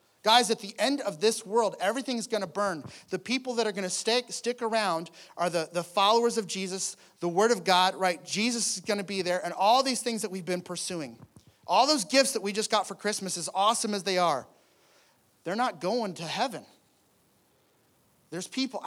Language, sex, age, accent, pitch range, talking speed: English, male, 30-49, American, 170-220 Hz, 205 wpm